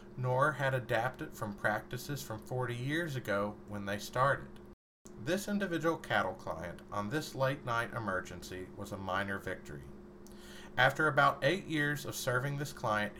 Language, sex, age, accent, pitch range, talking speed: English, male, 40-59, American, 105-140 Hz, 150 wpm